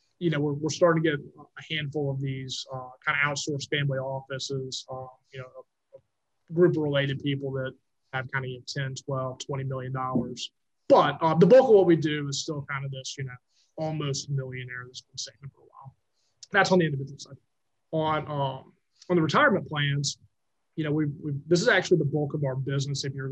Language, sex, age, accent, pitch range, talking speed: English, male, 20-39, American, 130-150 Hz, 210 wpm